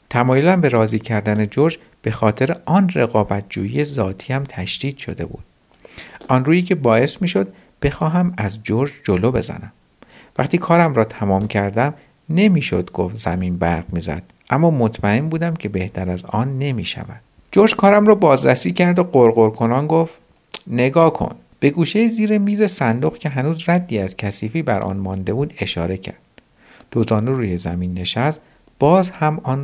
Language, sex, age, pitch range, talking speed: Persian, male, 50-69, 100-150 Hz, 150 wpm